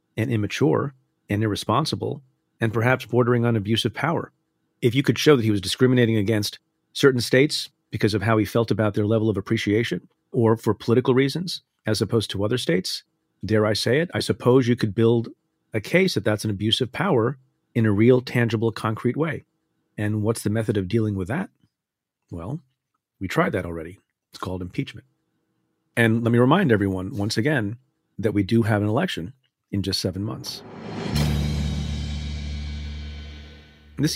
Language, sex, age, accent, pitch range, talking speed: English, male, 40-59, American, 105-130 Hz, 170 wpm